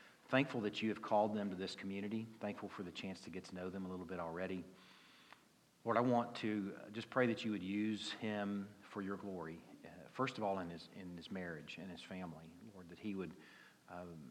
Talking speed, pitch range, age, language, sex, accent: 220 wpm, 90-105 Hz, 40-59, English, male, American